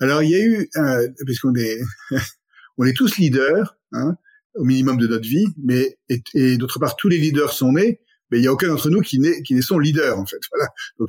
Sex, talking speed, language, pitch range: male, 235 wpm, French, 125-180 Hz